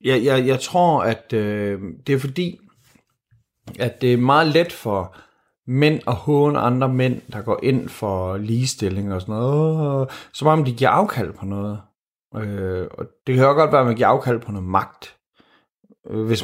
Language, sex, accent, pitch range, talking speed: Danish, male, native, 115-150 Hz, 185 wpm